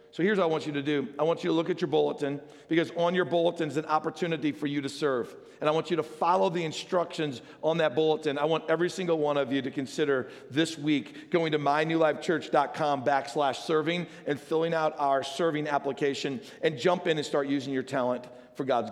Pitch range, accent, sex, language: 155-215 Hz, American, male, English